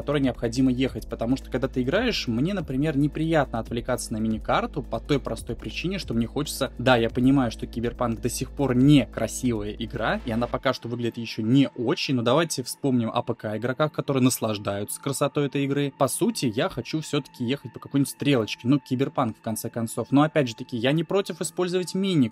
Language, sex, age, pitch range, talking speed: Russian, male, 20-39, 120-140 Hz, 200 wpm